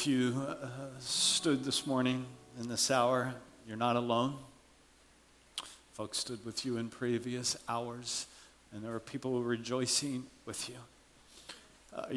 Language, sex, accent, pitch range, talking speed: English, male, American, 115-130 Hz, 130 wpm